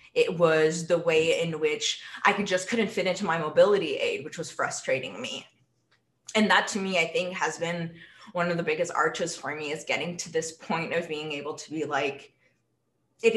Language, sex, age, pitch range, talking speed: English, female, 20-39, 160-195 Hz, 205 wpm